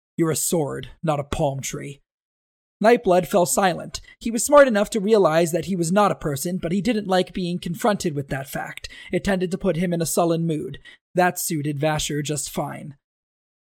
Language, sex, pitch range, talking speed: English, male, 165-220 Hz, 200 wpm